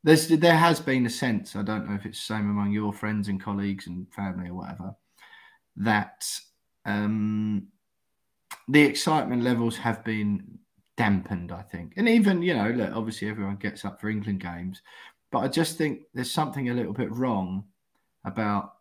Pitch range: 100-125 Hz